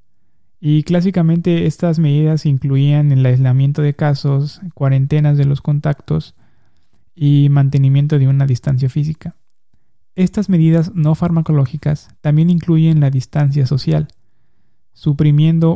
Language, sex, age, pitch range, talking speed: Spanish, male, 20-39, 135-155 Hz, 110 wpm